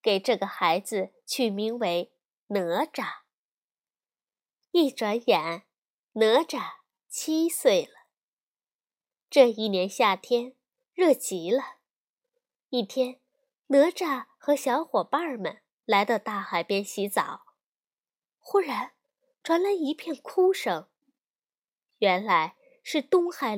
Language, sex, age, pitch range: Chinese, female, 20-39, 240-355 Hz